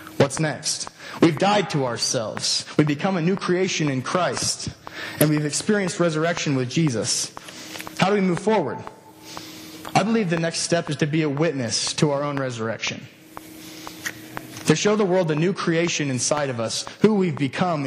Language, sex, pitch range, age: English, male, 140-175 Hz, 20-39